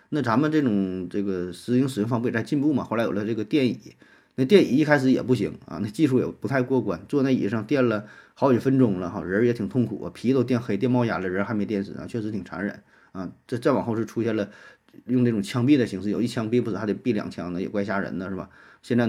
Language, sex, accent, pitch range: Chinese, male, native, 105-130 Hz